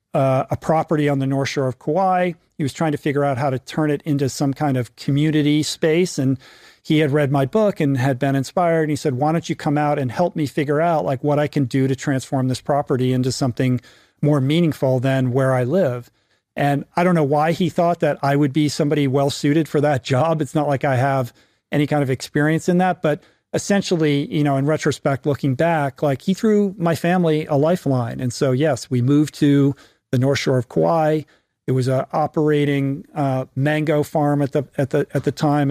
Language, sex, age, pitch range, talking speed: English, male, 40-59, 135-155 Hz, 220 wpm